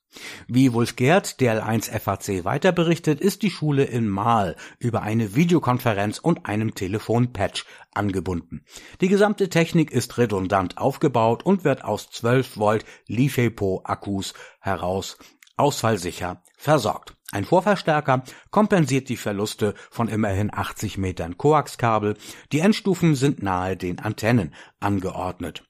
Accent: German